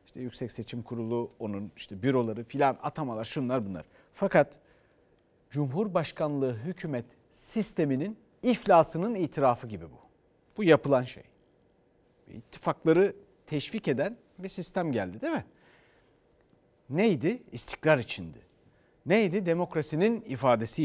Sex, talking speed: male, 105 wpm